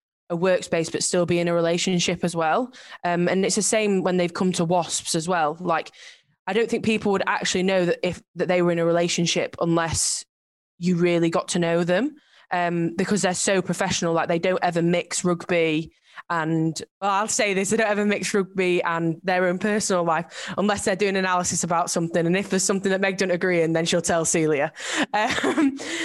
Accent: British